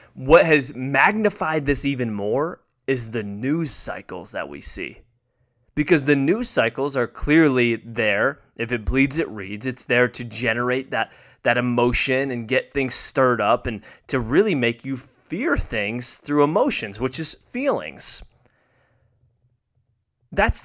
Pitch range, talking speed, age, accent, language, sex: 125-165 Hz, 145 wpm, 20-39, American, English, male